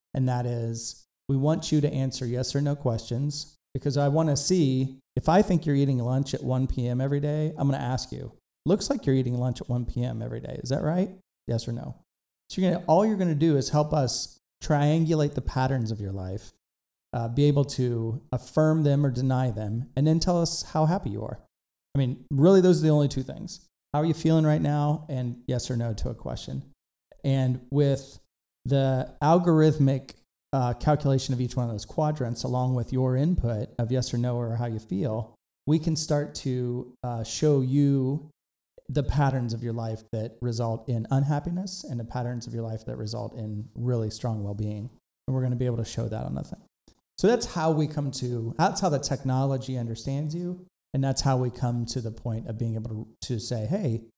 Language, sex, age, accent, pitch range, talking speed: English, male, 40-59, American, 120-150 Hz, 215 wpm